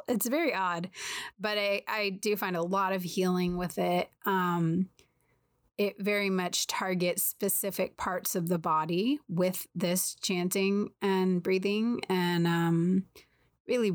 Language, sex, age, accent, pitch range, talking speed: English, female, 30-49, American, 175-205 Hz, 140 wpm